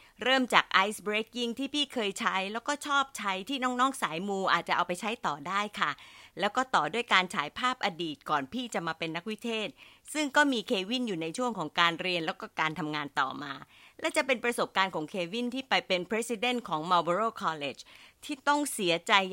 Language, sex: Thai, female